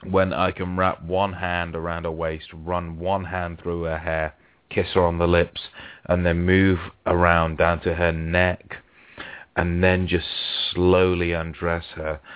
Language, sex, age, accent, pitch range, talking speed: English, male, 30-49, British, 80-95 Hz, 165 wpm